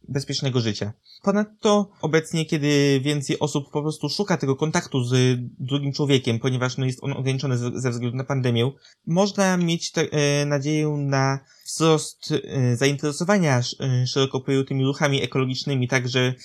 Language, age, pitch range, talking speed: Polish, 20-39, 130-155 Hz, 145 wpm